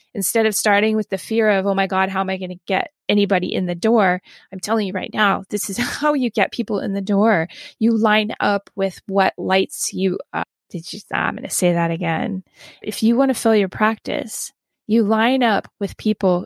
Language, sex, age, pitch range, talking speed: English, female, 20-39, 195-235 Hz, 230 wpm